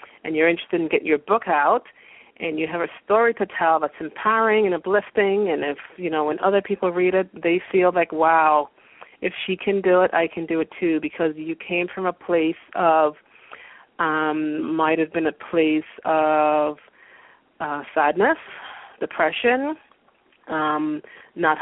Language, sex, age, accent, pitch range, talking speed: English, female, 30-49, American, 155-180 Hz, 170 wpm